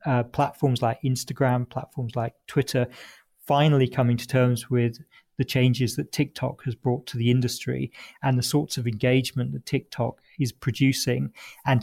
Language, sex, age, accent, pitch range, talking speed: English, male, 40-59, British, 120-135 Hz, 155 wpm